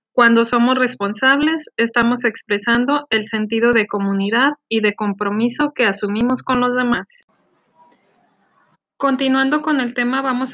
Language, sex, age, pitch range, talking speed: Spanish, female, 20-39, 220-260 Hz, 125 wpm